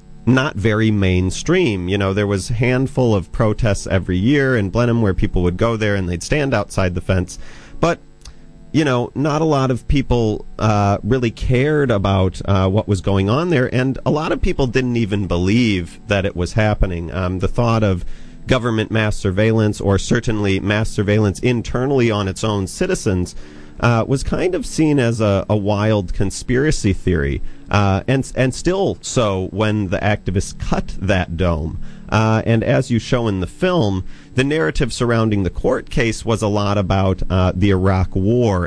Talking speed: 185 wpm